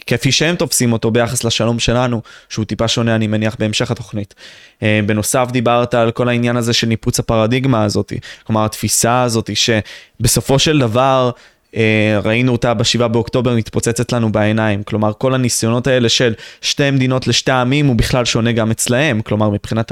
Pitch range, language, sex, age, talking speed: 115-140 Hz, Hebrew, male, 20-39, 160 wpm